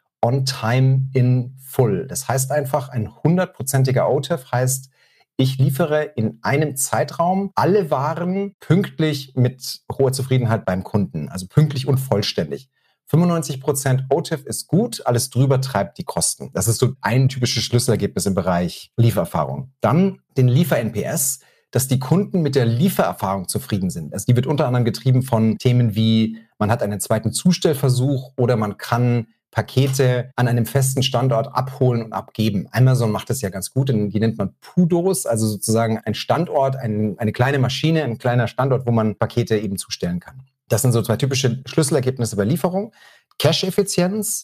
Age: 40-59